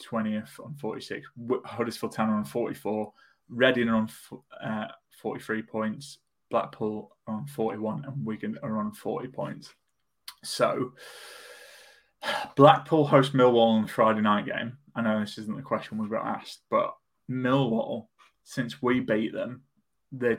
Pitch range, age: 110-130 Hz, 20-39